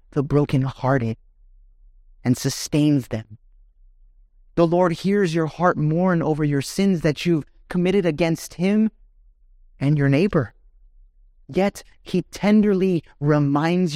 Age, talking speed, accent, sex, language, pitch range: 30-49, 110 wpm, American, male, English, 145-215 Hz